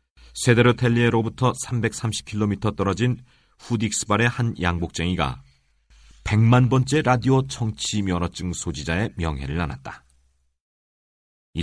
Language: Korean